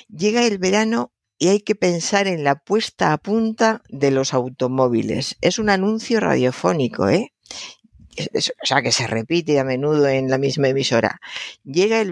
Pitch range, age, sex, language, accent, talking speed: 130-190 Hz, 60-79, female, Spanish, Spanish, 175 wpm